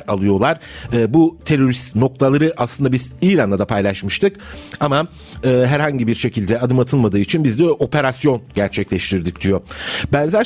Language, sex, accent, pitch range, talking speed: Turkish, male, native, 110-145 Hz, 125 wpm